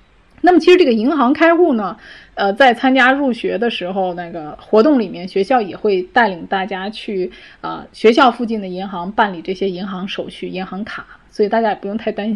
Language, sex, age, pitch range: Chinese, female, 20-39, 195-260 Hz